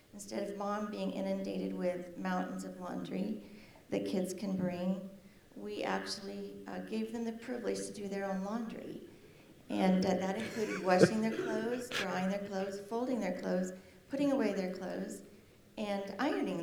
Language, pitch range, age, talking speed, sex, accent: English, 185-215 Hz, 40-59, 160 wpm, female, American